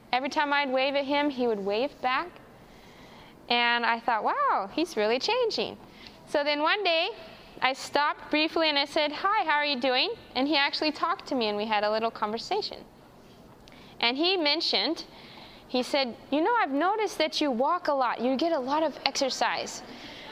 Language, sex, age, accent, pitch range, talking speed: English, female, 20-39, American, 250-330 Hz, 190 wpm